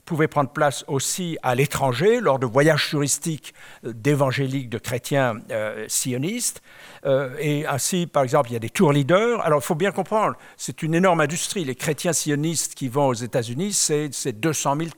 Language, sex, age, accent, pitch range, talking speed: French, male, 60-79, French, 130-165 Hz, 185 wpm